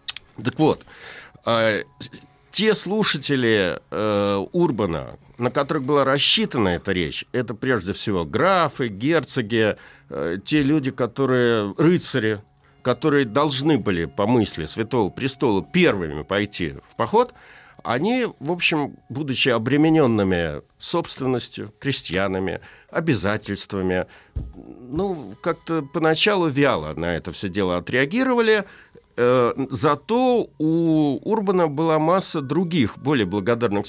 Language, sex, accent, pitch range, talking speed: Russian, male, native, 100-160 Hz, 105 wpm